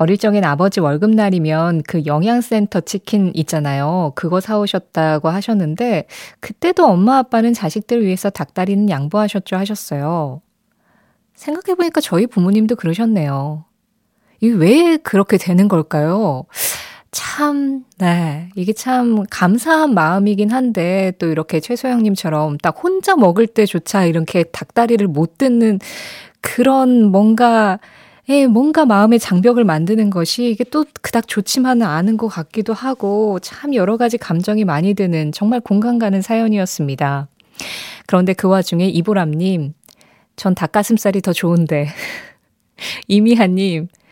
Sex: female